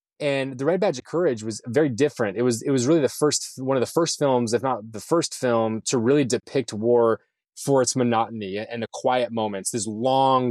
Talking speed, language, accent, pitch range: 230 wpm, English, American, 110-135 Hz